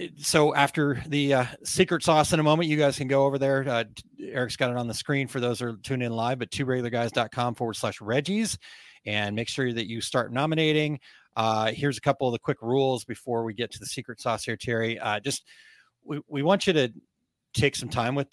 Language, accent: English, American